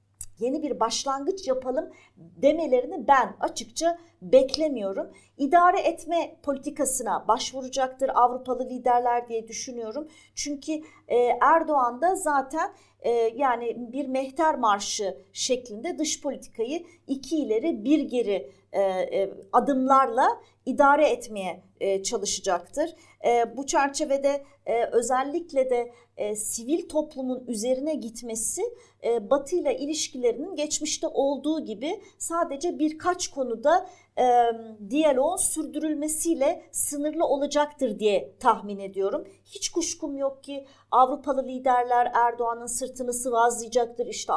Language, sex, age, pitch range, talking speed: Turkish, female, 40-59, 235-300 Hz, 95 wpm